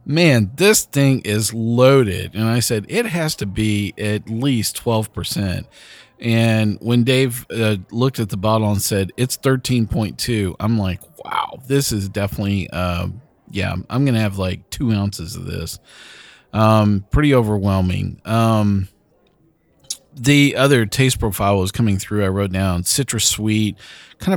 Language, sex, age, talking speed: English, male, 40-59, 150 wpm